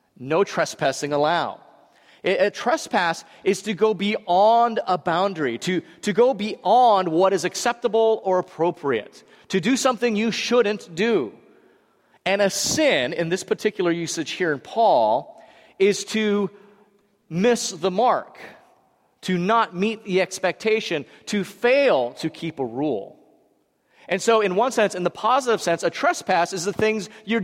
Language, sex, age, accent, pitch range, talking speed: English, male, 40-59, American, 190-250 Hz, 145 wpm